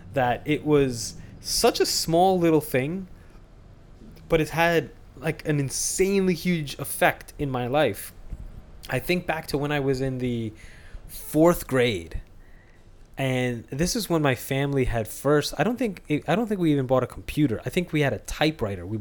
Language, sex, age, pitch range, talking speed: English, male, 20-39, 110-150 Hz, 175 wpm